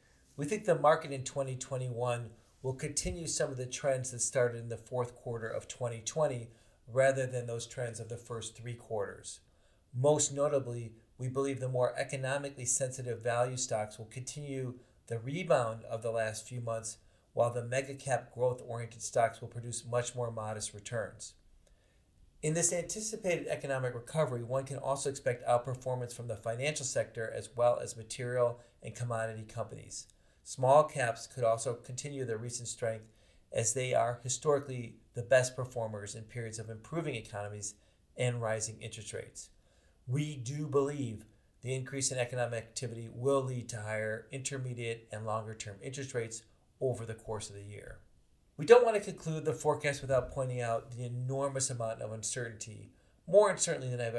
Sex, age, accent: male, 40-59, American